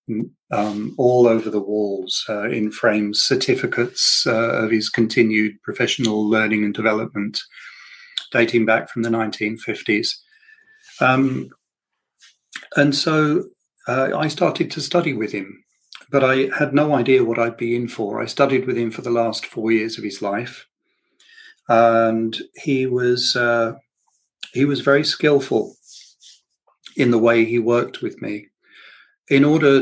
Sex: male